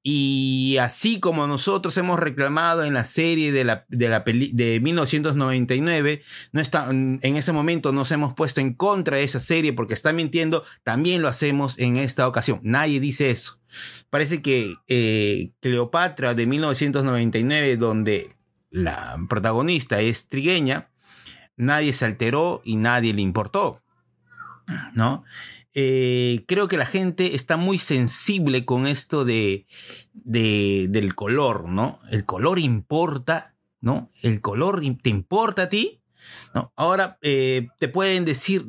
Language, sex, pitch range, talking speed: Spanish, male, 120-160 Hz, 130 wpm